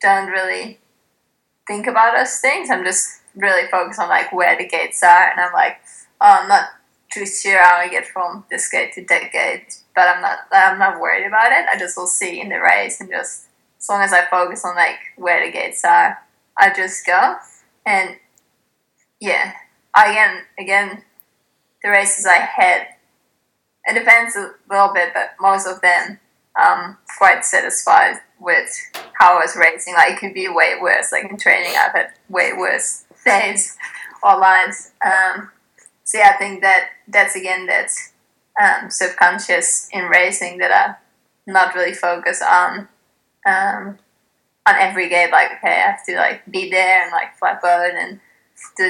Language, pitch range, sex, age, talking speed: English, 180-220 Hz, female, 20-39, 175 wpm